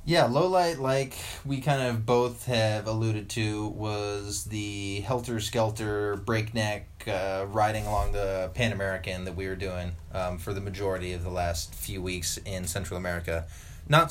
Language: English